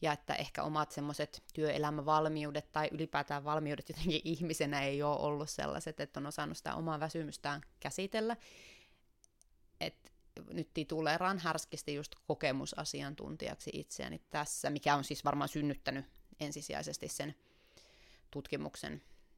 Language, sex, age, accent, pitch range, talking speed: Finnish, female, 20-39, native, 145-170 Hz, 120 wpm